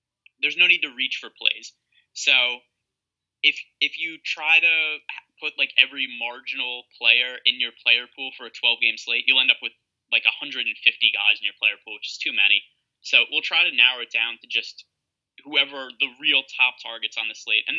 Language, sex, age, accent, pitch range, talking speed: English, male, 20-39, American, 125-145 Hz, 200 wpm